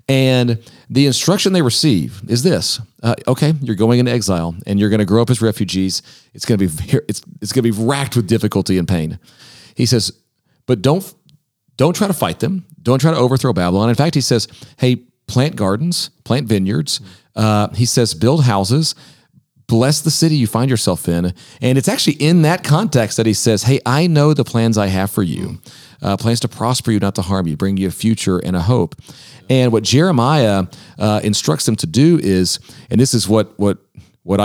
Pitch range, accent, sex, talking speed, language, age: 100-135 Hz, American, male, 205 wpm, English, 40-59